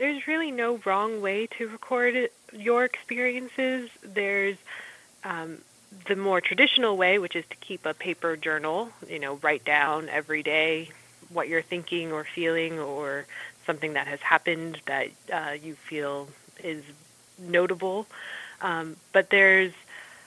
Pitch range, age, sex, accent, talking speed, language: 160-205 Hz, 20-39, female, American, 140 wpm, English